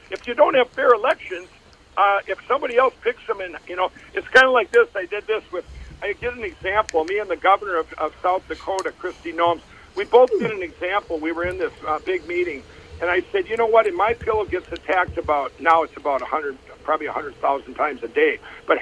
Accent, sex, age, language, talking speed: American, male, 60-79, English, 235 wpm